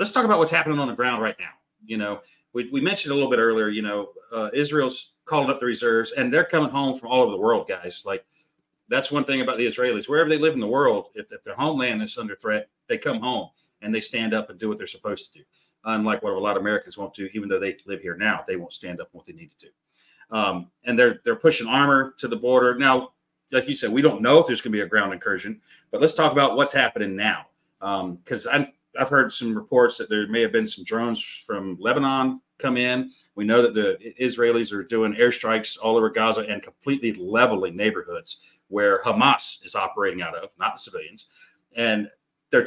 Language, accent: English, American